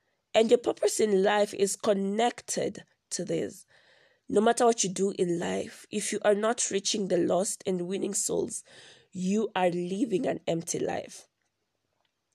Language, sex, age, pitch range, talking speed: English, female, 20-39, 190-225 Hz, 155 wpm